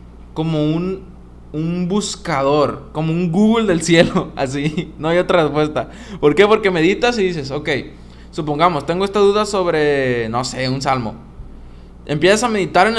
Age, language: 20-39, Spanish